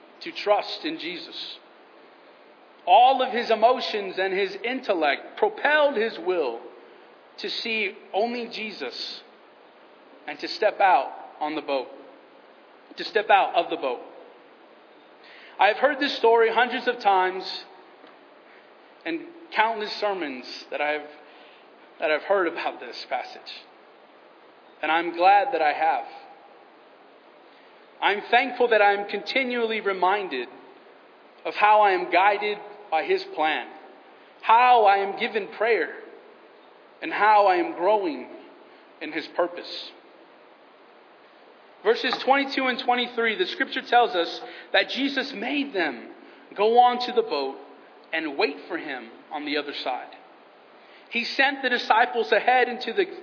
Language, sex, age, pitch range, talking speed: English, male, 40-59, 205-285 Hz, 125 wpm